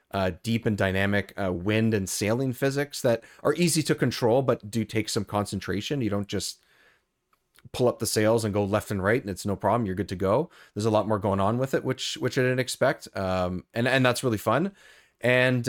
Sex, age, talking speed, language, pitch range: male, 30-49, 225 wpm, English, 110-135 Hz